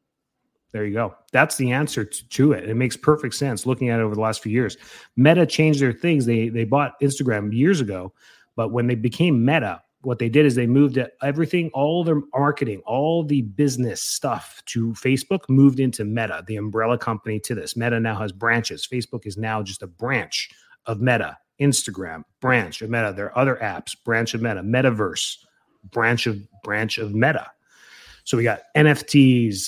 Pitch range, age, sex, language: 115-140 Hz, 30-49, male, English